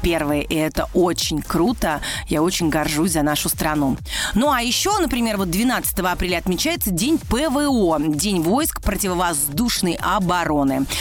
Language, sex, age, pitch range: Russian, female, 30-49, 160-240 Hz